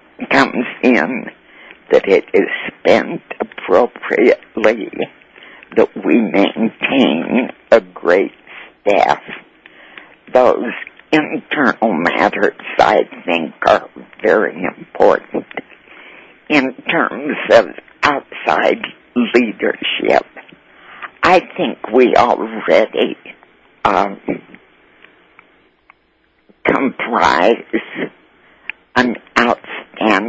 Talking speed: 65 wpm